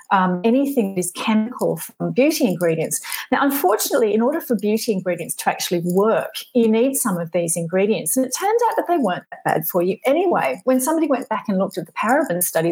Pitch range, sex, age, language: 175-255 Hz, female, 40-59, English